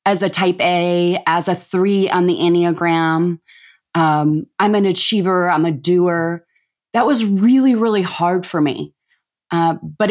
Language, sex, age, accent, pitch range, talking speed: English, female, 20-39, American, 160-185 Hz, 155 wpm